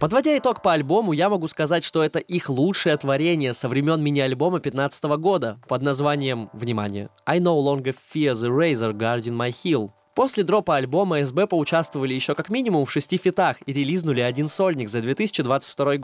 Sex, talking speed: male, 170 wpm